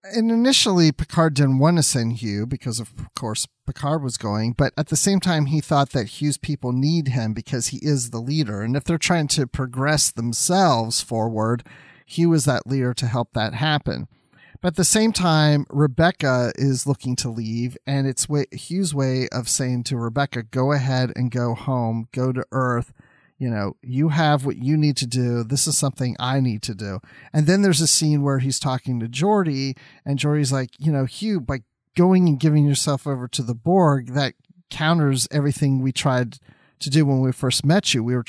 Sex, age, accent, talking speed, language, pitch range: male, 40-59, American, 200 wpm, English, 125-155 Hz